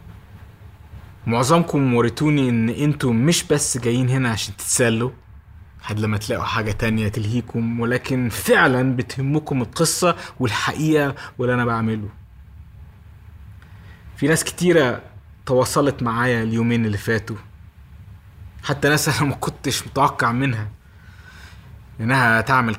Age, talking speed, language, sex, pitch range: 20-39, 105 wpm, Arabic, male, 95-125 Hz